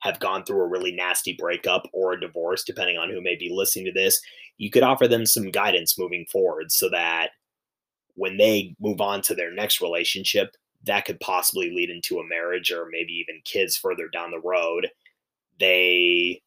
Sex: male